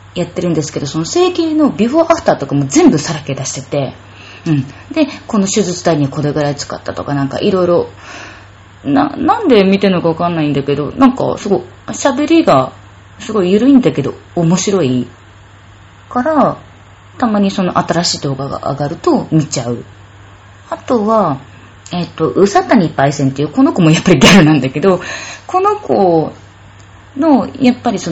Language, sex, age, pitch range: Japanese, female, 20-39, 130-205 Hz